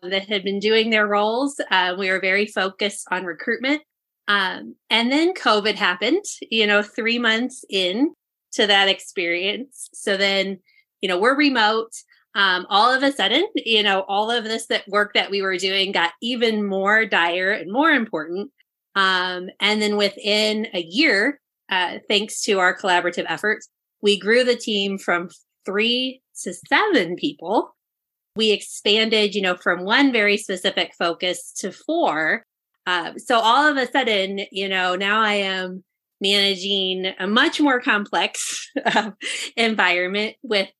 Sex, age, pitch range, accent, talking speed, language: female, 30-49, 195-240 Hz, American, 155 wpm, English